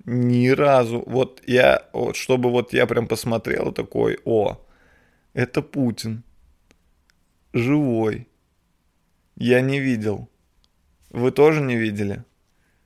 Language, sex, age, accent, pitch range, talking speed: Russian, male, 20-39, native, 80-130 Hz, 100 wpm